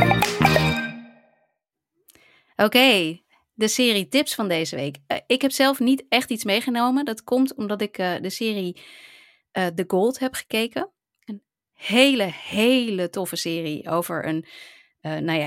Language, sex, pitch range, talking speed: Dutch, female, 165-245 Hz, 135 wpm